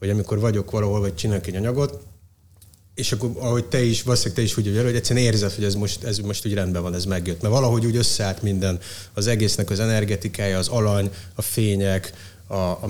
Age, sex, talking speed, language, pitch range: 30-49, male, 205 wpm, Hungarian, 100-125 Hz